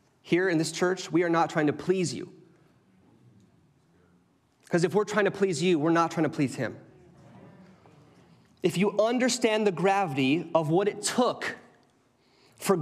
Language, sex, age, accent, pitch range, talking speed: English, male, 30-49, American, 150-195 Hz, 160 wpm